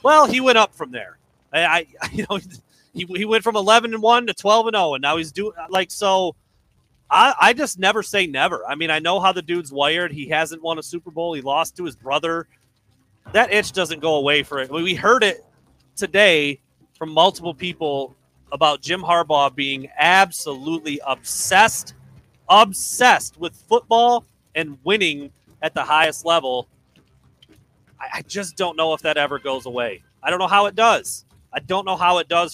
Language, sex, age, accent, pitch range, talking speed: English, male, 30-49, American, 145-200 Hz, 190 wpm